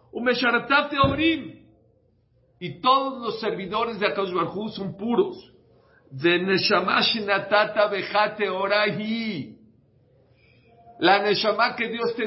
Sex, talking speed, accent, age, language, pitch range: male, 85 wpm, Mexican, 50-69, English, 130-195 Hz